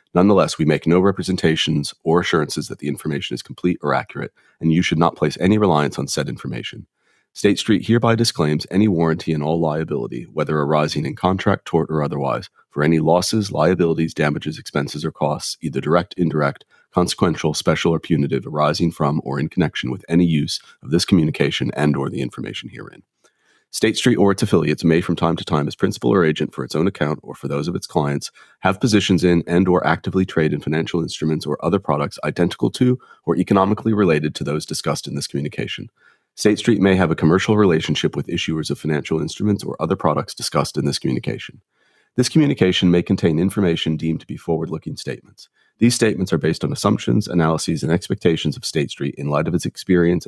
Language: English